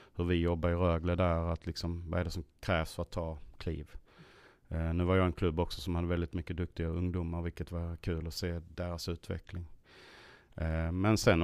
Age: 30-49